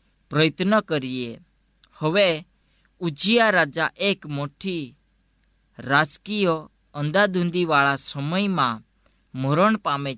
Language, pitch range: Gujarati, 135-180 Hz